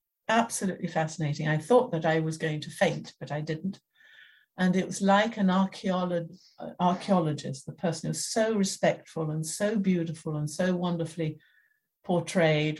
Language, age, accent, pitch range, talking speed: English, 60-79, British, 155-180 Hz, 150 wpm